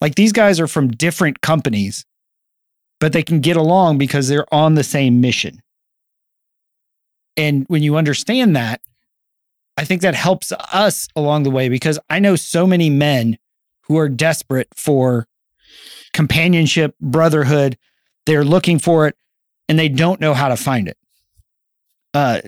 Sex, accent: male, American